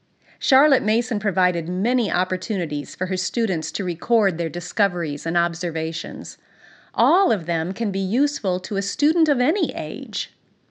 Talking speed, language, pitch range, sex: 145 wpm, English, 185-260 Hz, female